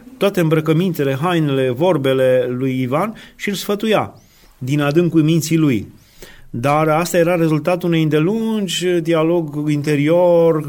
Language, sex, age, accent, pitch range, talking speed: Romanian, male, 30-49, native, 130-170 Hz, 110 wpm